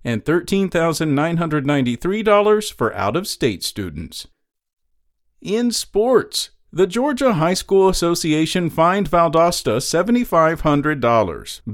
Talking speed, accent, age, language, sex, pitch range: 75 wpm, American, 50-69, English, male, 130-180 Hz